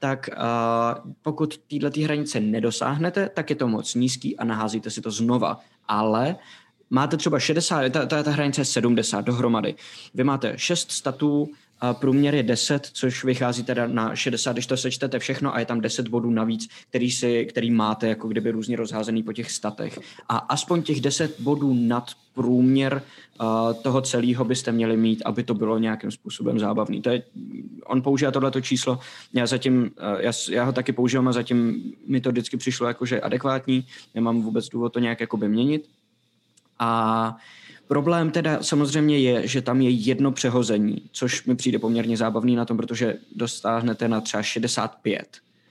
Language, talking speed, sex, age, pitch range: Czech, 175 wpm, male, 20-39, 115-140 Hz